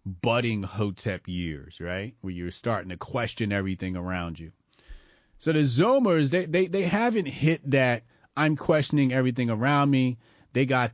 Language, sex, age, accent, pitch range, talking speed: English, male, 30-49, American, 105-135 Hz, 155 wpm